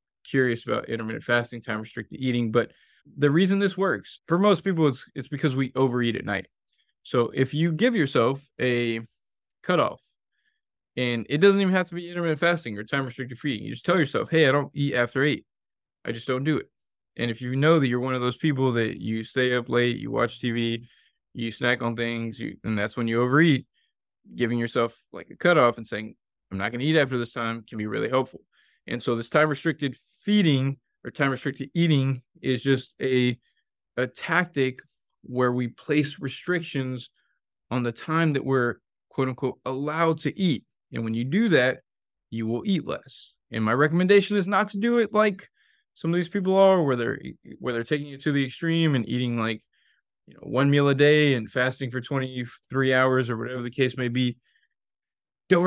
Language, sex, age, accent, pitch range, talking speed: English, male, 20-39, American, 120-155 Hz, 195 wpm